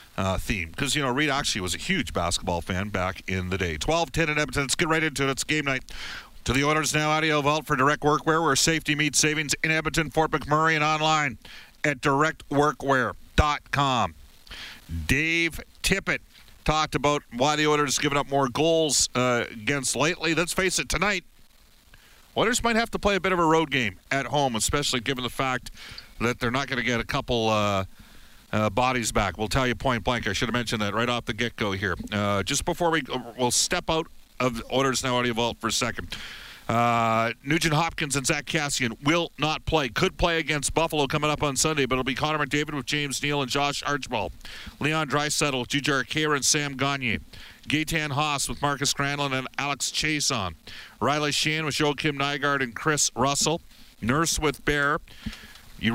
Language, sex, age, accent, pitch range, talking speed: English, male, 50-69, American, 120-150 Hz, 200 wpm